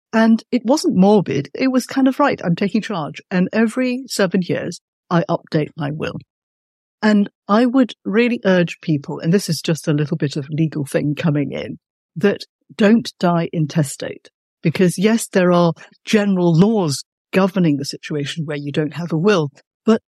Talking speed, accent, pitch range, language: 175 wpm, British, 155-210 Hz, English